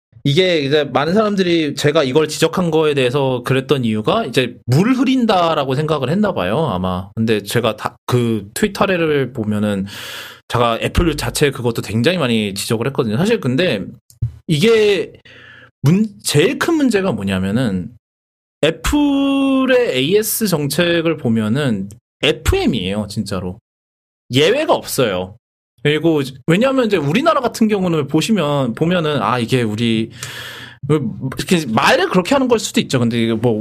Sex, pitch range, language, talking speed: male, 115-170 Hz, English, 120 wpm